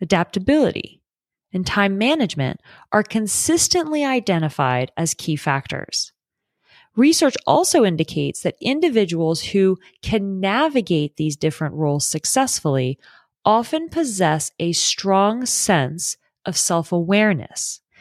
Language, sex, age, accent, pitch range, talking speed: English, female, 30-49, American, 155-225 Hz, 95 wpm